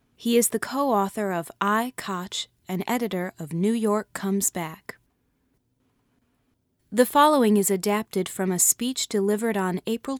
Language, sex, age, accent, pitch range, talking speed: English, female, 30-49, American, 190-235 Hz, 145 wpm